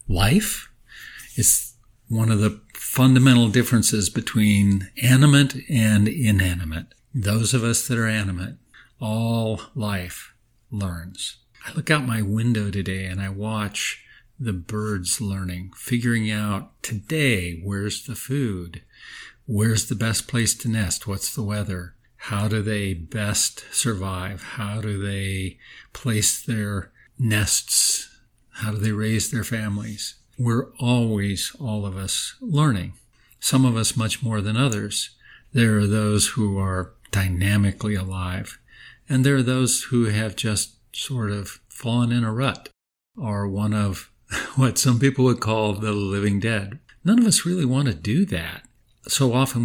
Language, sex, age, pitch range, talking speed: English, male, 50-69, 100-120 Hz, 145 wpm